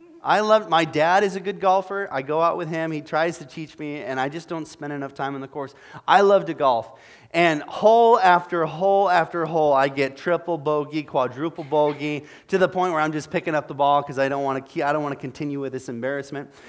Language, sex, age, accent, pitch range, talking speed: English, male, 30-49, American, 145-190 Hz, 225 wpm